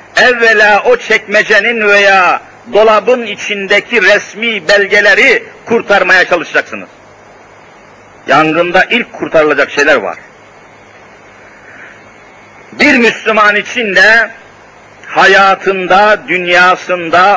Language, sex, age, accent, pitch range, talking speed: Turkish, male, 50-69, native, 190-225 Hz, 75 wpm